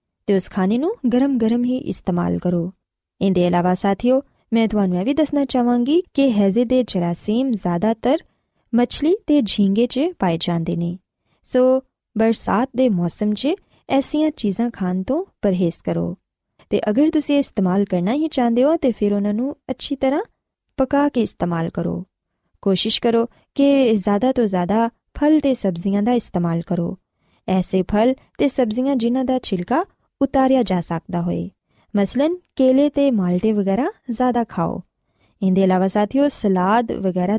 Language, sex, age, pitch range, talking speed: Punjabi, female, 20-39, 190-275 Hz, 145 wpm